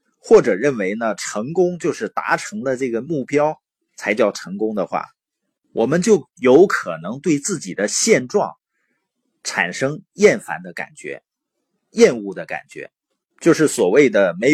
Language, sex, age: Chinese, male, 30-49